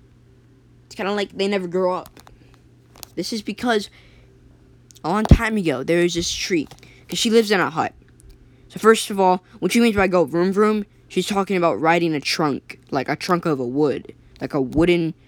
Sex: female